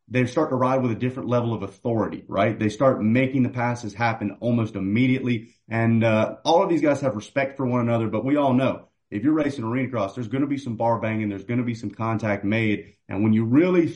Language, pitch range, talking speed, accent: English, 110-130 Hz, 245 wpm, American